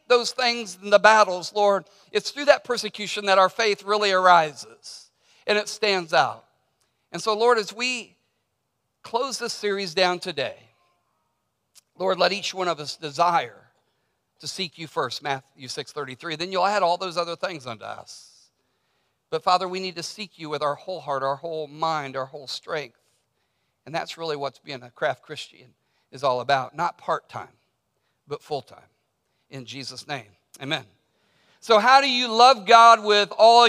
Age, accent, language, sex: 50-69, American, English, male